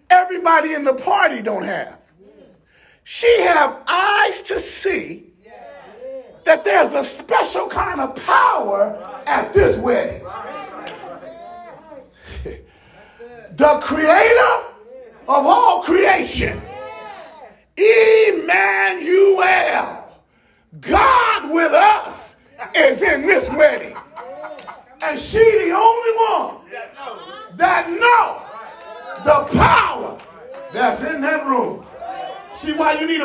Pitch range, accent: 280-405 Hz, American